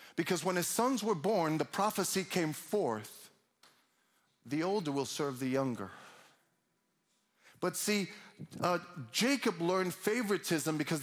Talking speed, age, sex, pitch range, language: 125 wpm, 40-59, male, 155-210 Hz, English